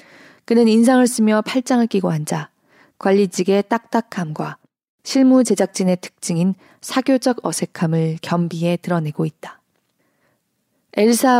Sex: female